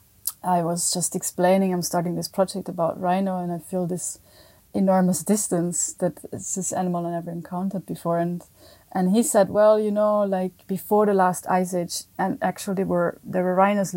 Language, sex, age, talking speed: English, female, 20-39, 185 wpm